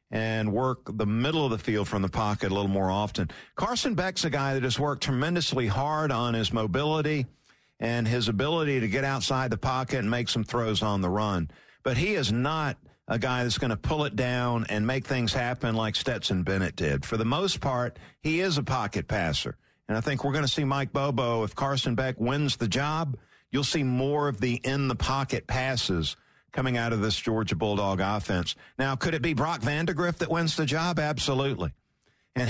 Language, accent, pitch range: English, American, 110-145 Hz